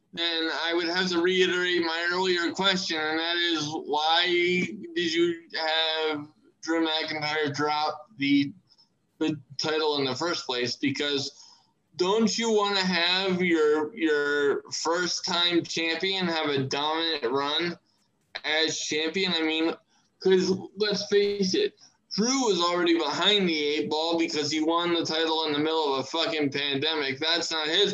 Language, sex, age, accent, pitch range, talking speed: English, male, 20-39, American, 150-185 Hz, 150 wpm